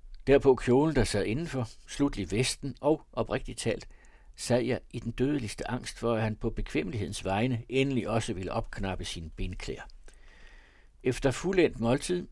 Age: 60-79